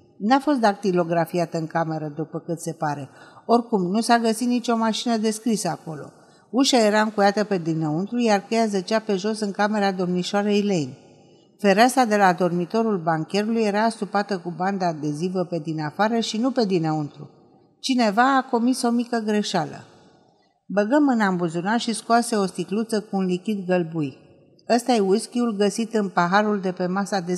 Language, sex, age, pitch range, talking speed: Romanian, female, 50-69, 170-225 Hz, 165 wpm